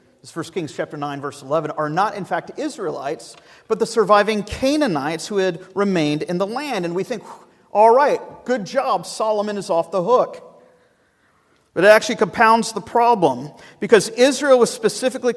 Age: 50-69